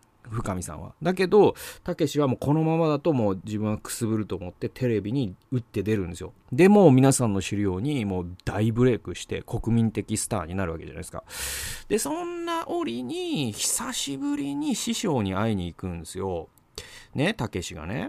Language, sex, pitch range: Japanese, male, 100-145 Hz